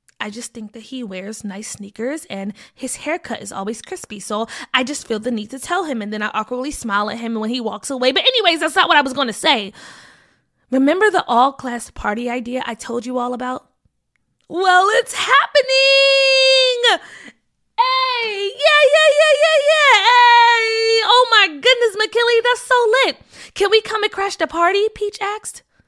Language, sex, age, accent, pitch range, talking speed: English, female, 20-39, American, 225-370 Hz, 190 wpm